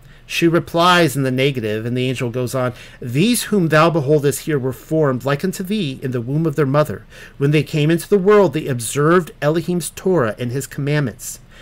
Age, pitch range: 50-69, 125-165 Hz